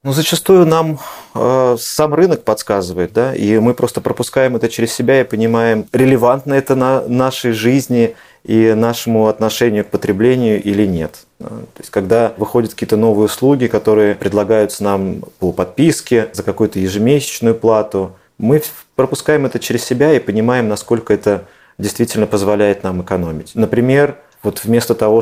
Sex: male